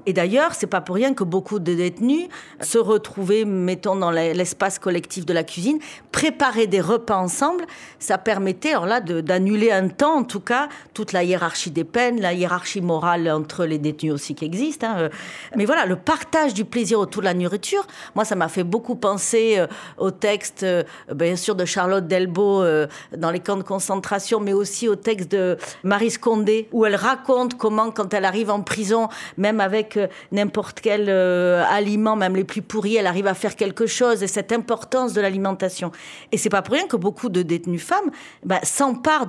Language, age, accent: French, 40-59, French